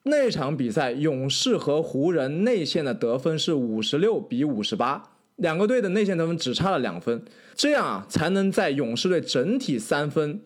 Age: 20-39